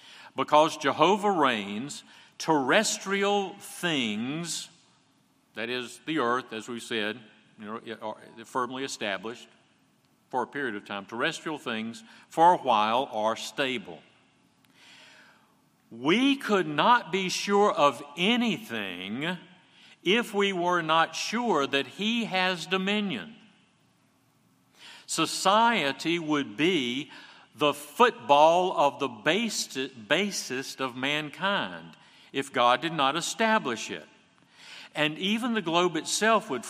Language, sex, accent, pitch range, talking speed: English, male, American, 135-200 Hz, 110 wpm